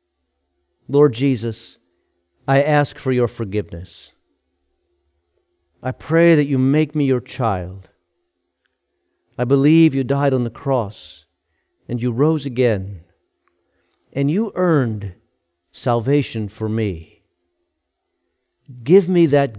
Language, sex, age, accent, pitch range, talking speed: English, male, 50-69, American, 110-145 Hz, 105 wpm